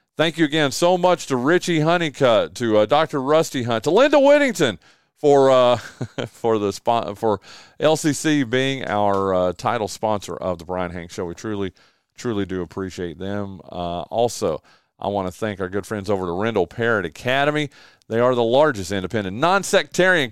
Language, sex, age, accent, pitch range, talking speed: English, male, 40-59, American, 100-145 Hz, 175 wpm